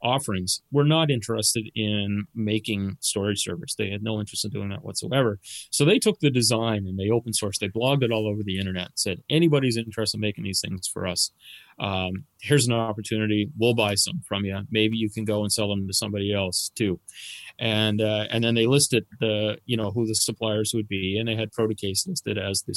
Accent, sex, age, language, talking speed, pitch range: American, male, 30-49, English, 220 wpm, 105-130 Hz